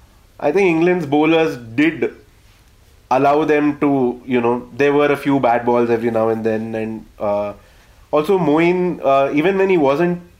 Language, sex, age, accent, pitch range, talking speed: English, male, 30-49, Indian, 110-145 Hz, 165 wpm